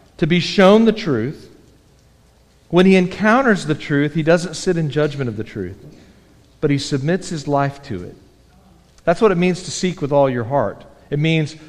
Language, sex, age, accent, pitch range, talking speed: English, male, 40-59, American, 150-205 Hz, 190 wpm